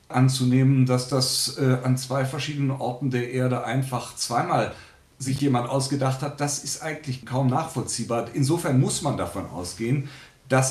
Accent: German